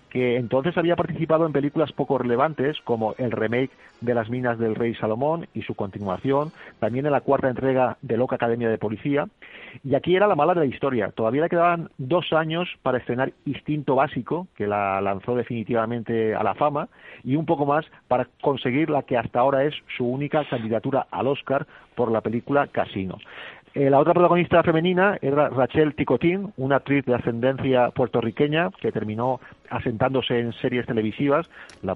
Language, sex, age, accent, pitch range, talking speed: Spanish, male, 40-59, Spanish, 120-150 Hz, 175 wpm